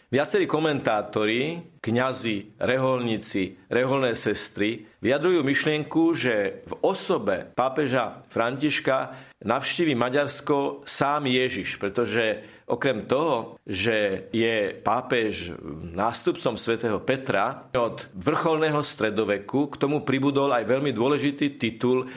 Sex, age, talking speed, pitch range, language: male, 50-69, 95 wpm, 110-140 Hz, Slovak